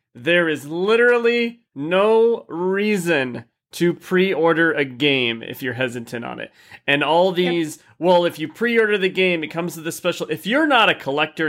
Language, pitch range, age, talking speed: English, 130-175 Hz, 30-49, 170 wpm